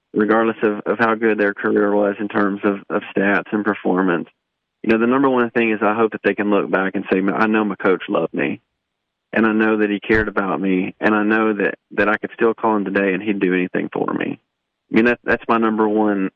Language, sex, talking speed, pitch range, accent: English, male, 250 wpm, 100-110 Hz, American